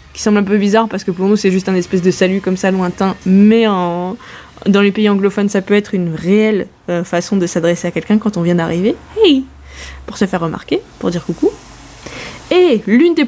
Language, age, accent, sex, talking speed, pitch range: French, 20-39, French, female, 220 wpm, 180-235 Hz